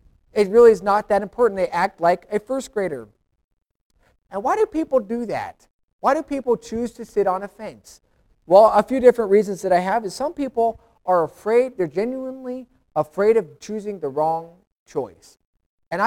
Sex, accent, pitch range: male, American, 205-250 Hz